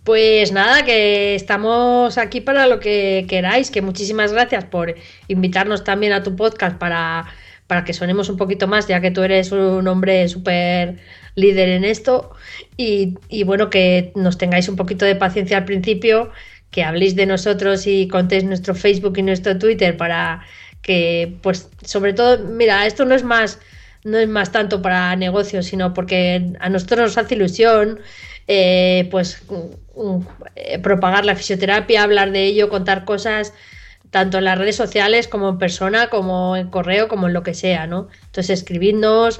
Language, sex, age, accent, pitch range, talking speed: Spanish, female, 20-39, Spanish, 185-210 Hz, 170 wpm